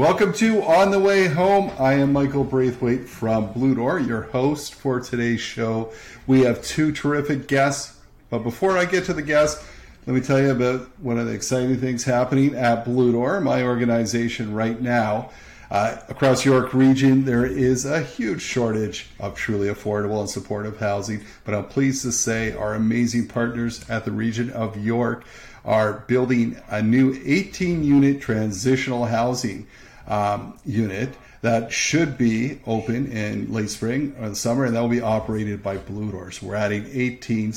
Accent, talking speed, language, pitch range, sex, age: American, 170 wpm, English, 105-130 Hz, male, 40-59